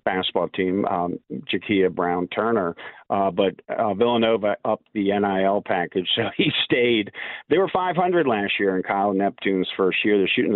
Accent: American